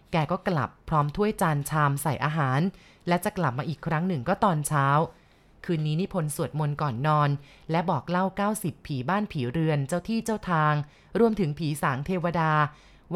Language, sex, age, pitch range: Thai, female, 20-39, 150-190 Hz